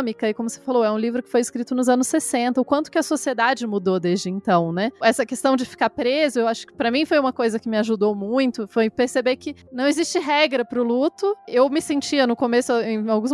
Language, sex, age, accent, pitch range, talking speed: Portuguese, female, 20-39, Brazilian, 230-285 Hz, 245 wpm